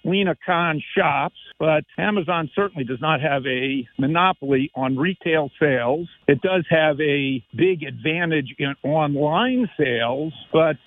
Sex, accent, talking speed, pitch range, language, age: male, American, 135 wpm, 145-175 Hz, English, 50-69